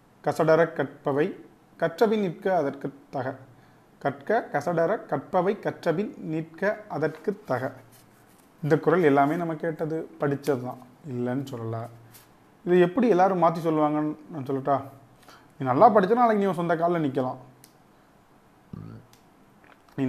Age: 30-49